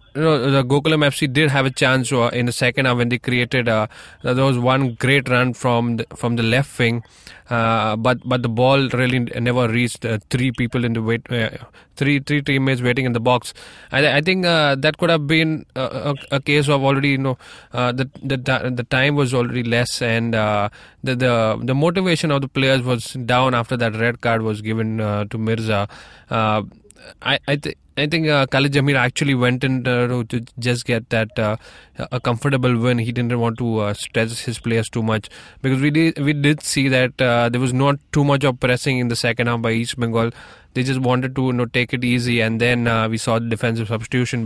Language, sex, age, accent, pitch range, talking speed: English, male, 20-39, Indian, 115-135 Hz, 220 wpm